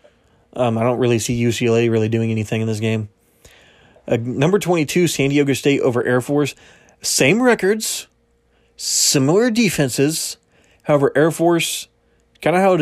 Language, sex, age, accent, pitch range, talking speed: English, male, 20-39, American, 115-145 Hz, 150 wpm